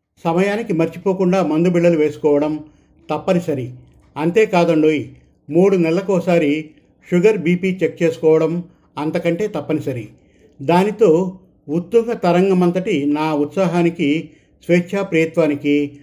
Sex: male